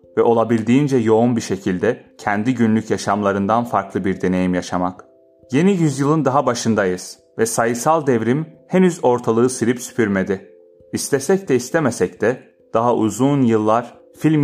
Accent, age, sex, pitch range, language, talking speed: native, 30-49, male, 100-125 Hz, Turkish, 130 wpm